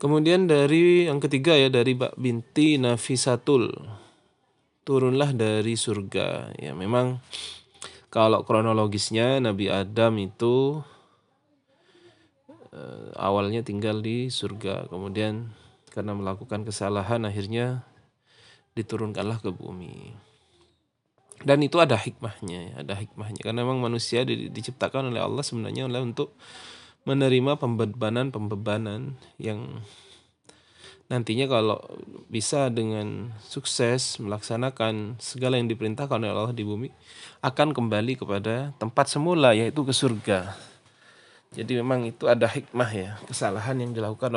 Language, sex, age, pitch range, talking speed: Indonesian, male, 20-39, 110-135 Hz, 105 wpm